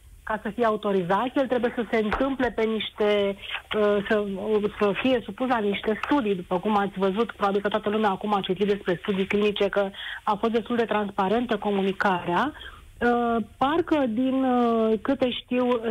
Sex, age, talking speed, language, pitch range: female, 30-49, 175 wpm, Romanian, 205-250 Hz